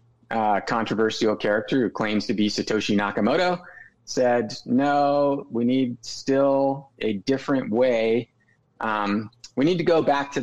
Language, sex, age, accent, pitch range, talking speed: English, male, 30-49, American, 105-135 Hz, 140 wpm